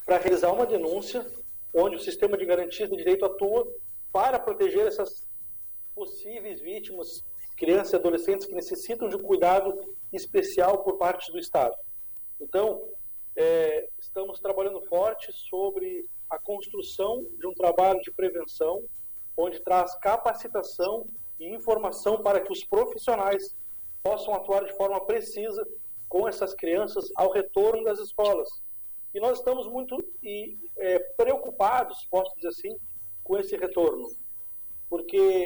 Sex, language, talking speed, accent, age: male, Portuguese, 130 wpm, Brazilian, 50-69